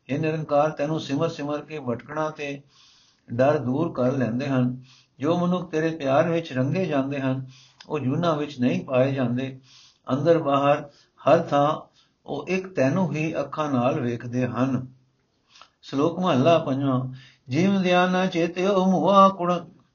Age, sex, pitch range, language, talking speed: 60-79, male, 130-165 Hz, Punjabi, 110 wpm